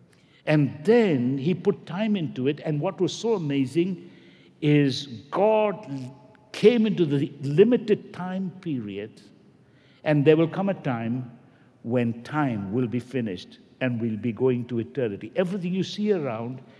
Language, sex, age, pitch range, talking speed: English, male, 60-79, 140-200 Hz, 145 wpm